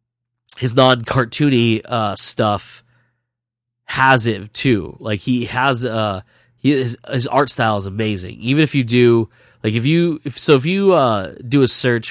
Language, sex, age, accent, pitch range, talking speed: English, male, 20-39, American, 105-125 Hz, 165 wpm